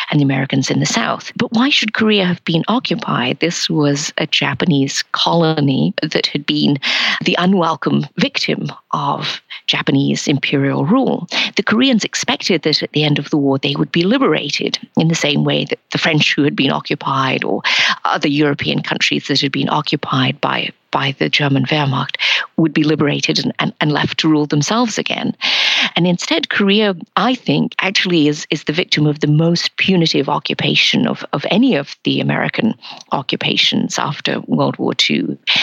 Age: 50-69